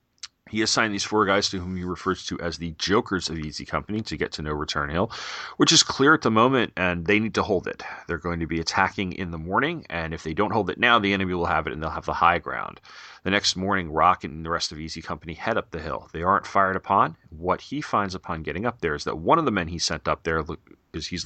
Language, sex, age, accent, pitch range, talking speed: English, male, 30-49, American, 80-95 Hz, 275 wpm